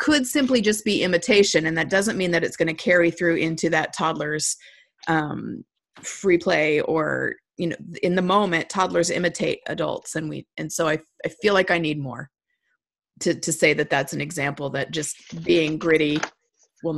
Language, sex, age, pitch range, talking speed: English, female, 30-49, 160-205 Hz, 185 wpm